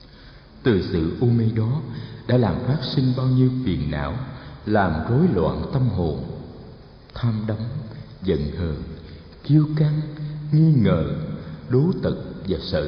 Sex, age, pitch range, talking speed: male, 60-79, 100-140 Hz, 140 wpm